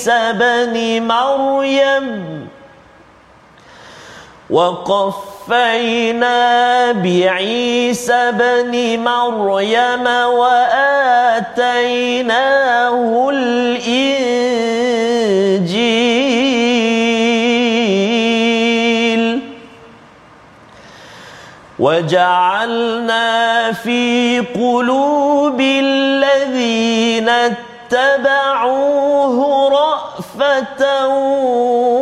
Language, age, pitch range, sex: Malayalam, 40-59, 235-275 Hz, male